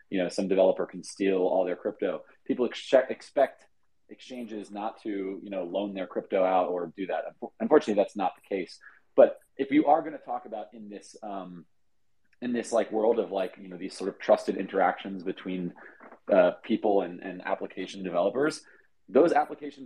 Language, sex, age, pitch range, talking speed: English, male, 30-49, 100-130 Hz, 185 wpm